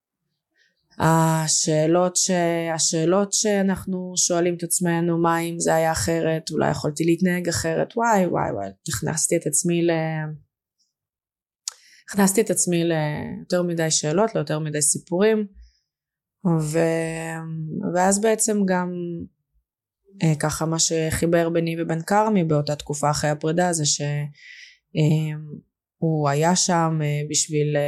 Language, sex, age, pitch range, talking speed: Hebrew, female, 20-39, 150-175 Hz, 105 wpm